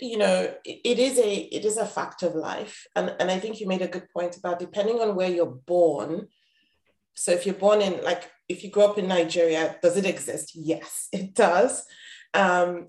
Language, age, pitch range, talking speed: English, 30-49, 175-205 Hz, 210 wpm